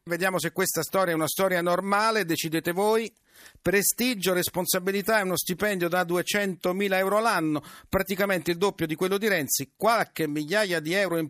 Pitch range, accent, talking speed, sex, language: 155-200 Hz, native, 170 wpm, male, Italian